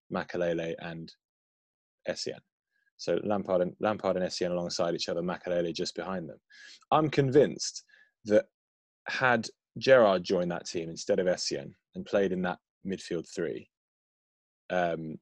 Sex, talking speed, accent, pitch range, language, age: male, 135 wpm, British, 90-120 Hz, English, 20-39